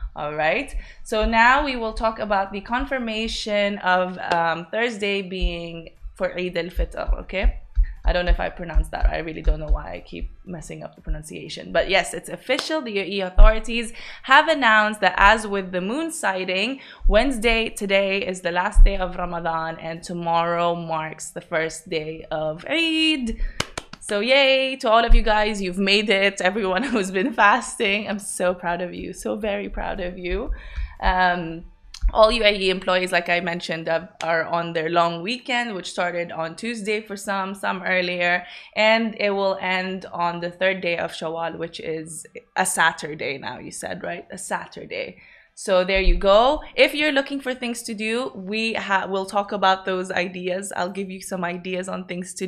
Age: 20-39